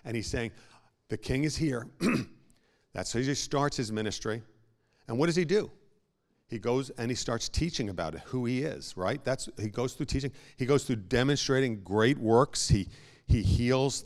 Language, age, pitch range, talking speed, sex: English, 50-69, 100-130 Hz, 190 wpm, male